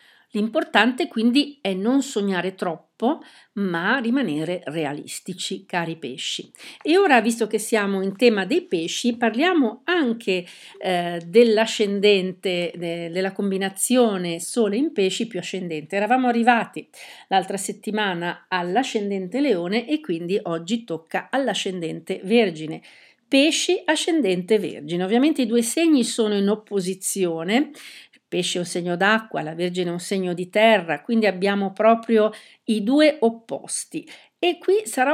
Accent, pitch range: native, 185-235 Hz